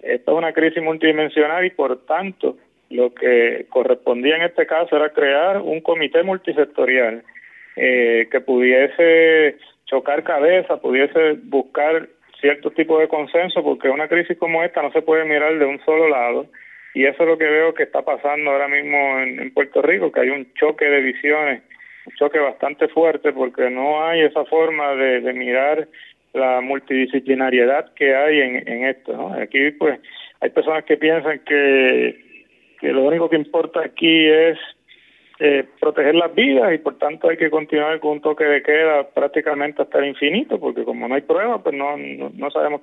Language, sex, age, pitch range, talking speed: Spanish, male, 30-49, 135-165 Hz, 180 wpm